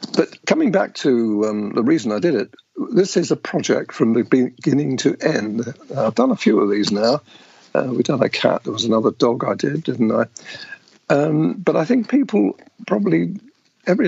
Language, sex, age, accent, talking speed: English, male, 50-69, British, 195 wpm